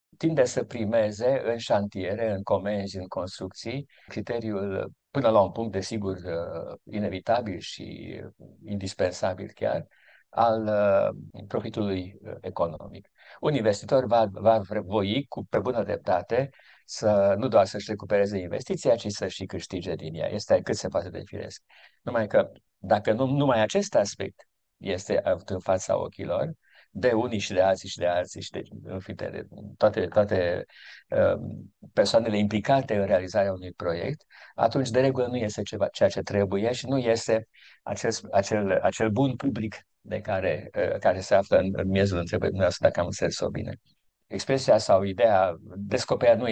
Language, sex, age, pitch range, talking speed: Romanian, male, 50-69, 100-115 Hz, 150 wpm